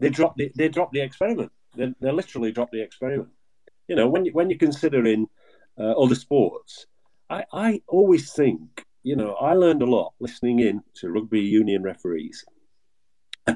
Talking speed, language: 175 wpm, English